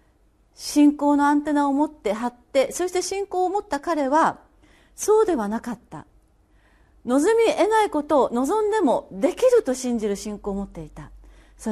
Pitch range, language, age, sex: 210-345 Hz, Japanese, 40-59, female